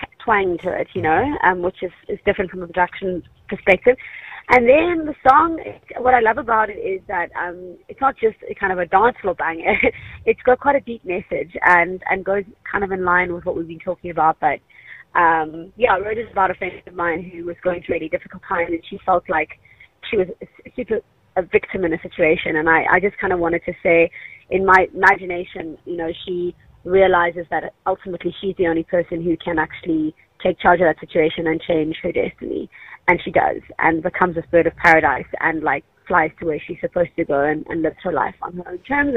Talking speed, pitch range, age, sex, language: 230 wpm, 170-195 Hz, 20-39, female, English